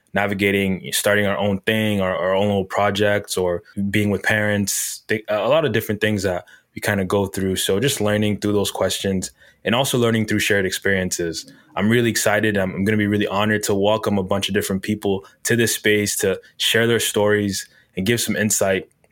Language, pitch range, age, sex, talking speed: English, 100-110 Hz, 20-39, male, 200 wpm